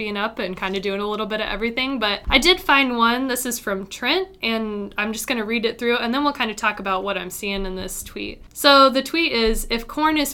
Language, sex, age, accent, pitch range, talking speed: English, female, 20-39, American, 200-245 Hz, 275 wpm